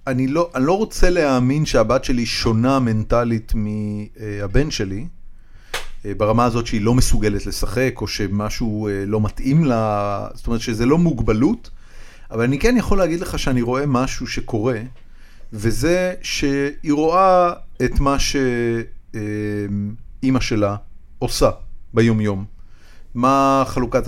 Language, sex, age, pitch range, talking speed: Hebrew, male, 30-49, 105-140 Hz, 120 wpm